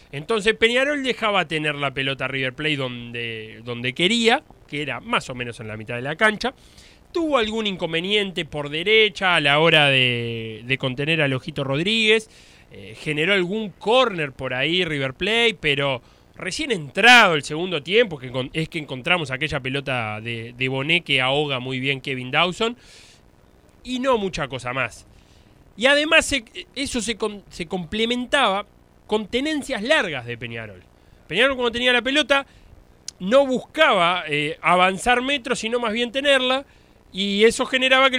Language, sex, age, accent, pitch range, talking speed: Spanish, male, 20-39, Argentinian, 140-225 Hz, 160 wpm